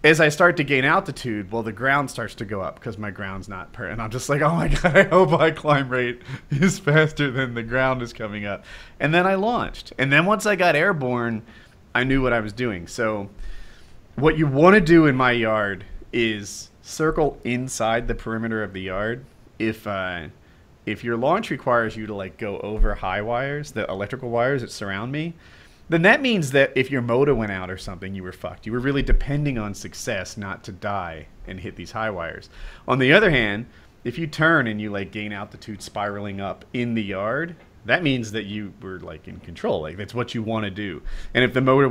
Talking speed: 220 wpm